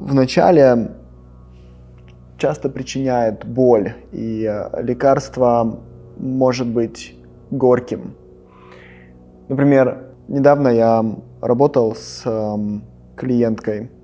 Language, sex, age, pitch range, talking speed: Russian, male, 20-39, 95-130 Hz, 75 wpm